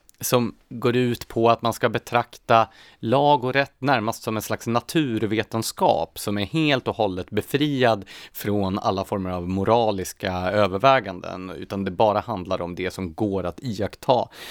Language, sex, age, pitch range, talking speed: Swedish, male, 30-49, 95-130 Hz, 155 wpm